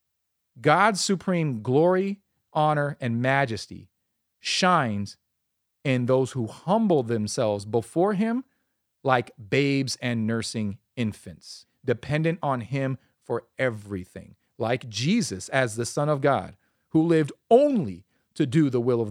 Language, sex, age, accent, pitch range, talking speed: English, male, 40-59, American, 110-155 Hz, 120 wpm